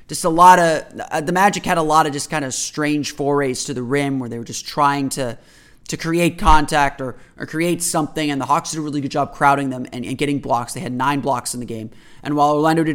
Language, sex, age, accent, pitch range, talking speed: English, male, 20-39, American, 130-155 Hz, 255 wpm